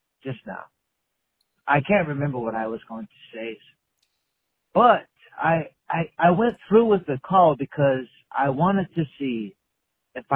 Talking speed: 150 wpm